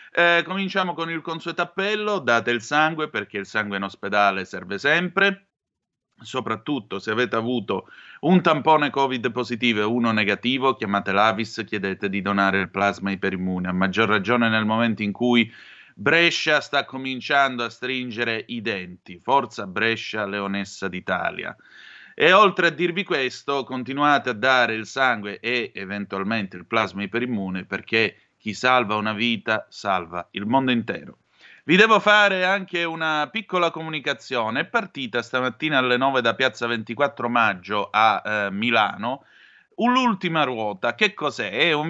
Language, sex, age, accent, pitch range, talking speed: Italian, male, 30-49, native, 110-155 Hz, 150 wpm